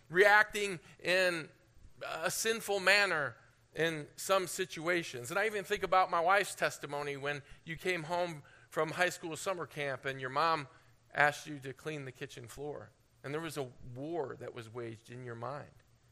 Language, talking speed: English, 170 wpm